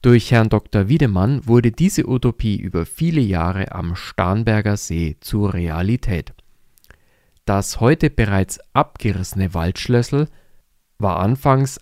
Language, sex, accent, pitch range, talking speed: German, male, German, 100-130 Hz, 110 wpm